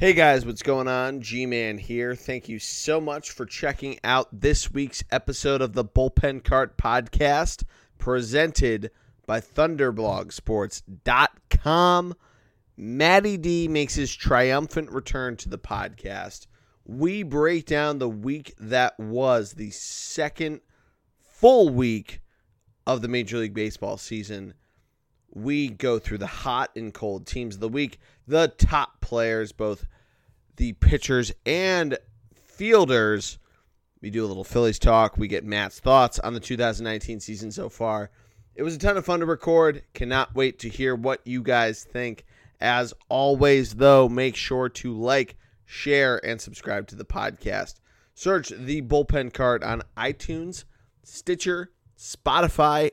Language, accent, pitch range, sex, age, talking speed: English, American, 110-140 Hz, male, 30-49, 140 wpm